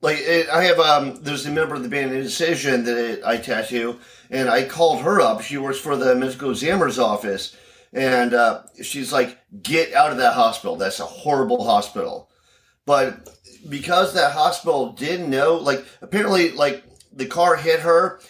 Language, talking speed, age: English, 180 wpm, 40-59